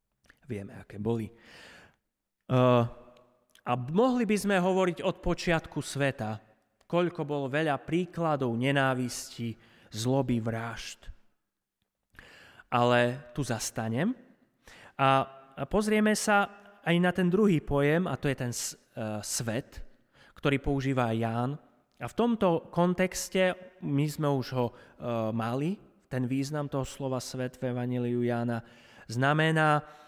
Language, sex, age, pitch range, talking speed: Slovak, male, 30-49, 120-165 Hz, 115 wpm